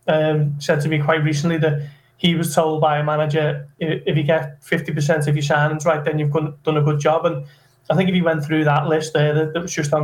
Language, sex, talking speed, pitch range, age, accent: English, male, 245 wpm, 150-165 Hz, 20-39, British